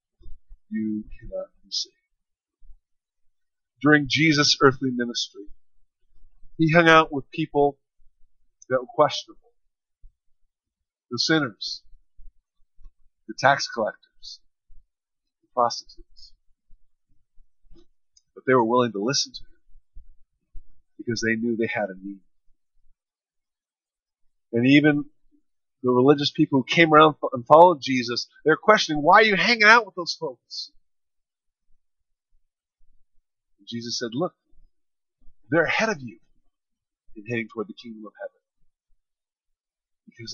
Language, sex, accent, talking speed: English, male, American, 110 wpm